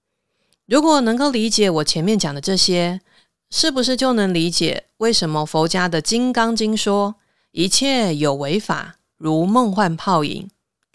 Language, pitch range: Chinese, 170-230 Hz